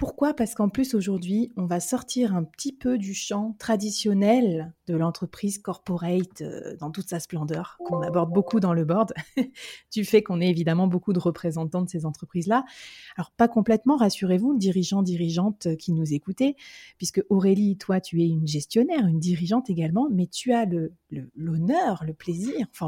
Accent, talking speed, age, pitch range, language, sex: French, 175 wpm, 30-49, 170-230 Hz, French, female